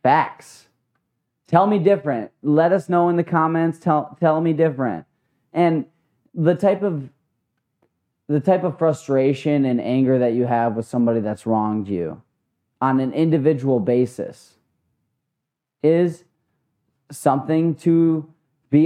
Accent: American